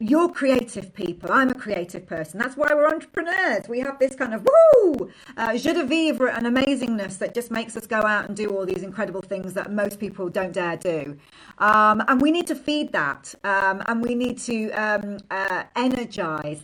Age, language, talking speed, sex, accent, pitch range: 40-59, English, 200 wpm, female, British, 190-255 Hz